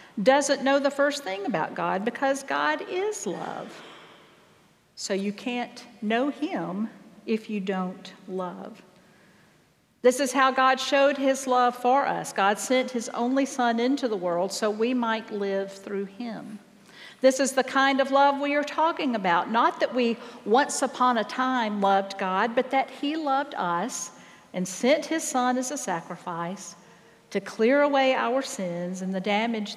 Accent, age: American, 50-69